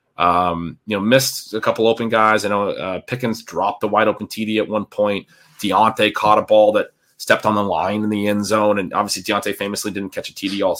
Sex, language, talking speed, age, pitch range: male, English, 235 wpm, 30-49, 105-130 Hz